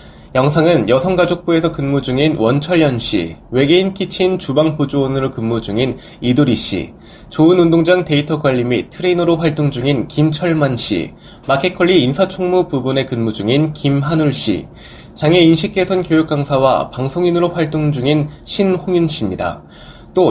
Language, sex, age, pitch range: Korean, male, 20-39, 130-170 Hz